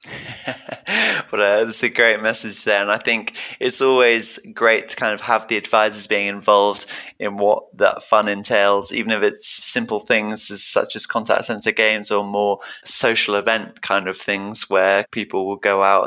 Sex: male